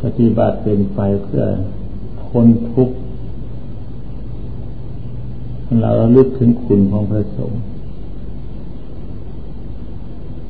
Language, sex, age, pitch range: Thai, male, 60-79, 95-120 Hz